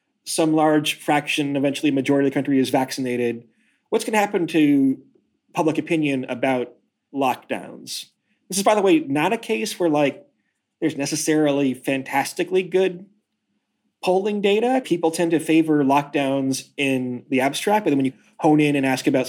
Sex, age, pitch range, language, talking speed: male, 30-49, 135-175 Hz, English, 160 wpm